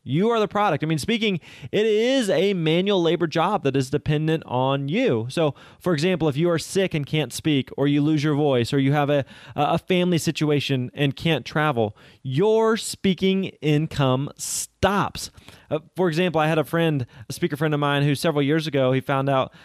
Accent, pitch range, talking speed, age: American, 135-170 Hz, 200 wpm, 20-39